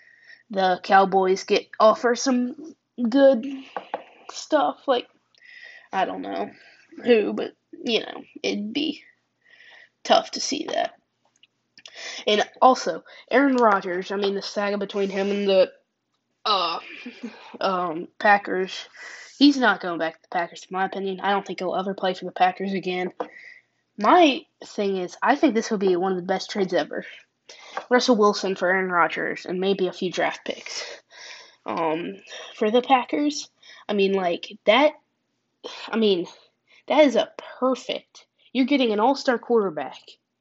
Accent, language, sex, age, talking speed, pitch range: American, English, female, 20-39, 150 wpm, 185-260 Hz